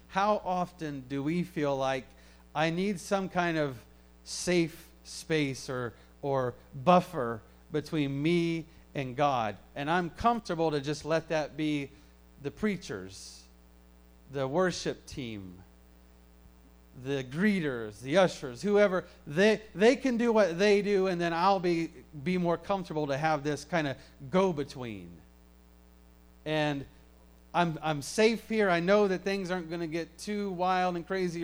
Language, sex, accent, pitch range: English, male, American, 130-180 Hz